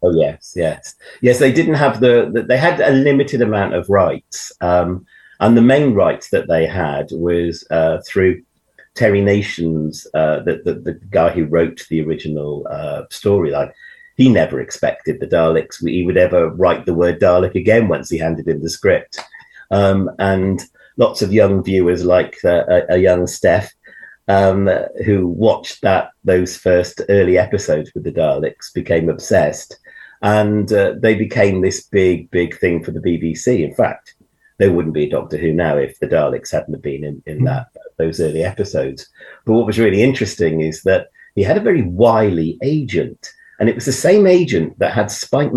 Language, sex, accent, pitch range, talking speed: English, male, British, 85-125 Hz, 180 wpm